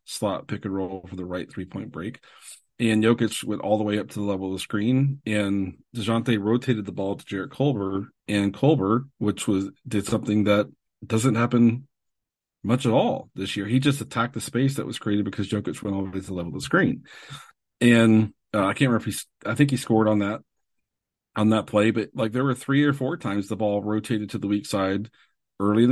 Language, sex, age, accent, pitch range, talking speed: English, male, 40-59, American, 100-115 Hz, 225 wpm